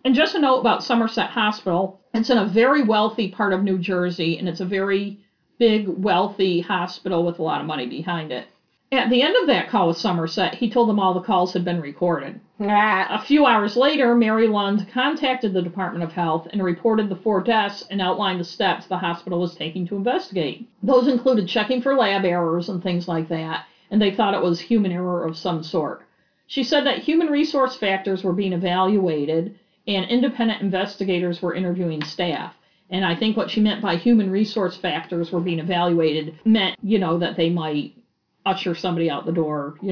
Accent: American